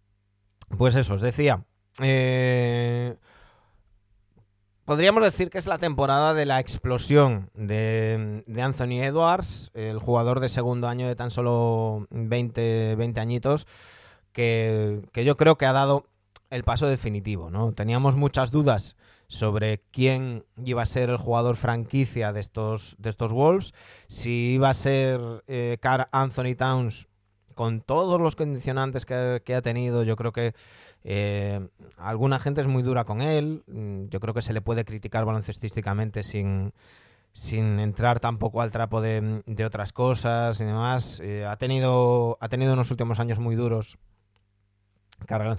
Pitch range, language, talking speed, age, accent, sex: 105-125 Hz, Spanish, 150 wpm, 30-49, Spanish, male